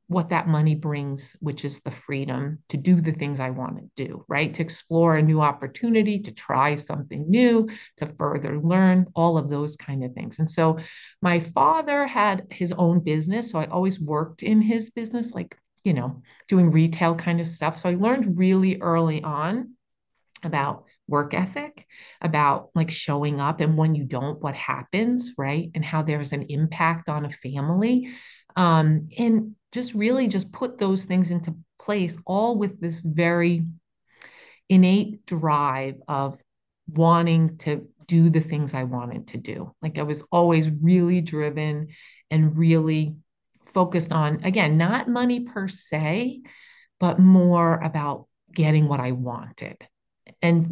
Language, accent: English, American